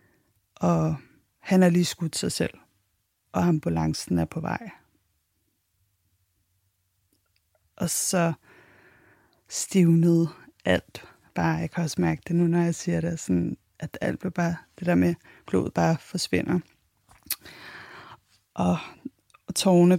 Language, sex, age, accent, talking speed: English, female, 30-49, Danish, 115 wpm